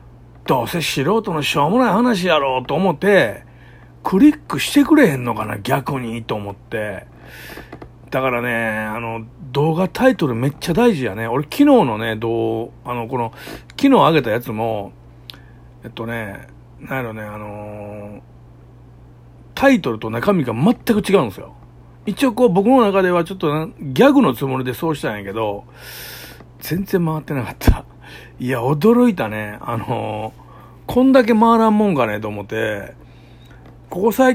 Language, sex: Japanese, male